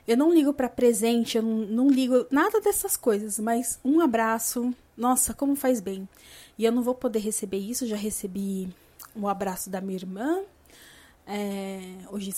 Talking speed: 170 wpm